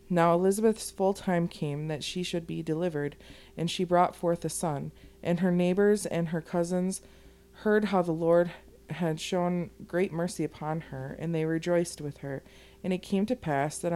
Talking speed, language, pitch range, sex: 185 wpm, English, 160-190 Hz, female